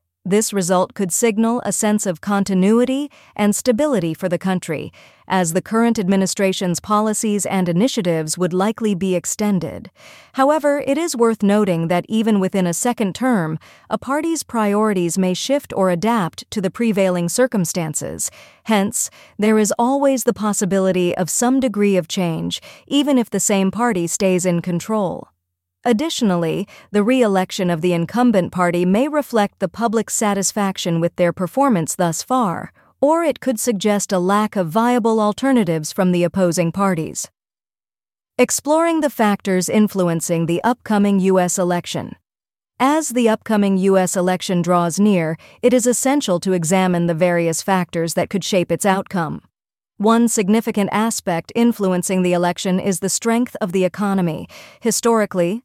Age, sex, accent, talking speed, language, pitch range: 40-59, female, American, 145 wpm, English, 180-230 Hz